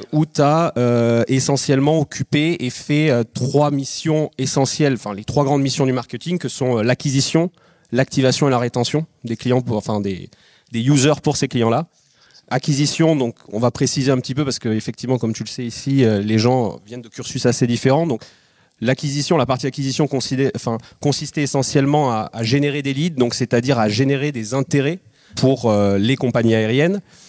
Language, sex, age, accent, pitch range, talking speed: French, male, 30-49, French, 120-145 Hz, 185 wpm